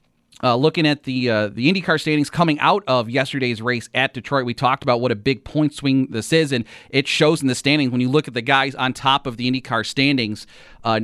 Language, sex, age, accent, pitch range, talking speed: English, male, 30-49, American, 115-145 Hz, 240 wpm